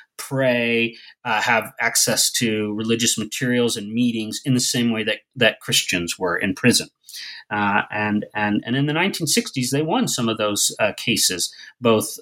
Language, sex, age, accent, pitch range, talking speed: English, male, 40-59, American, 115-145 Hz, 165 wpm